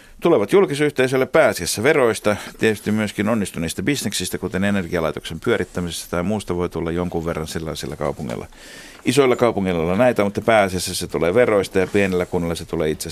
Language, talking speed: Finnish, 155 wpm